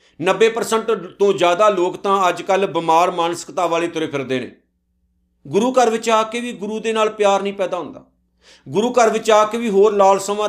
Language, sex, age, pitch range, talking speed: Punjabi, male, 50-69, 170-220 Hz, 195 wpm